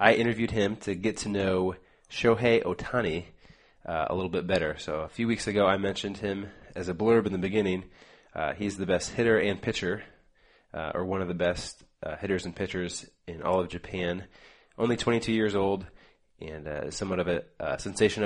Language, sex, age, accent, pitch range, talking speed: English, male, 20-39, American, 90-110 Hz, 195 wpm